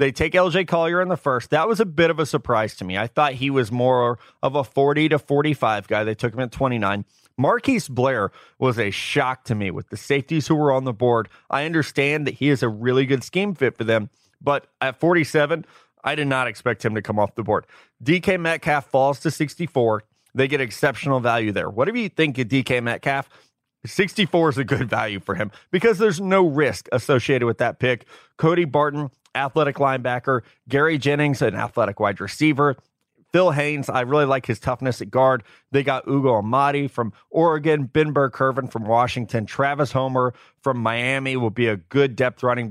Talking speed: 200 wpm